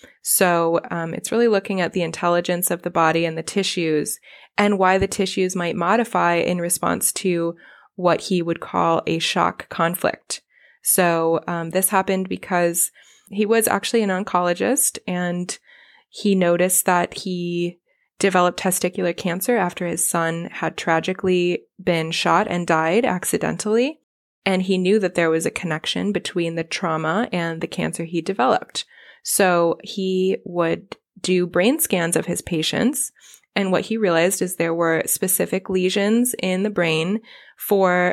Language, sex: English, female